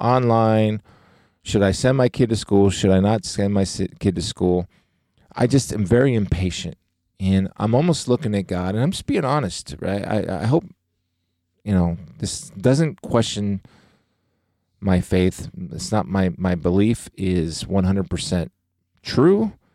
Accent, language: American, English